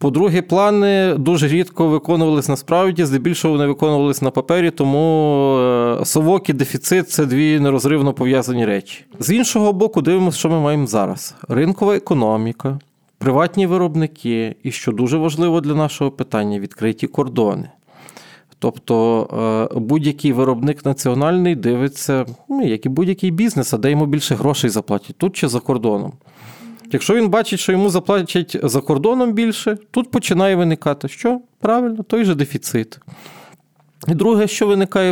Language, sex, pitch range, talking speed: Ukrainian, male, 125-180 Hz, 140 wpm